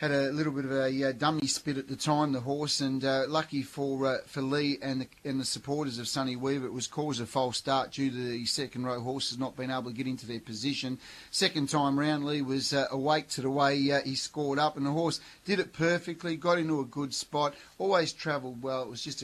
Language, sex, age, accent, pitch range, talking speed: English, male, 30-49, Australian, 130-145 Hz, 250 wpm